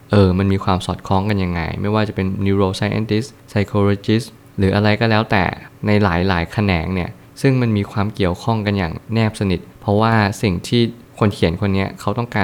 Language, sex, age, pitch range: Thai, male, 20-39, 95-110 Hz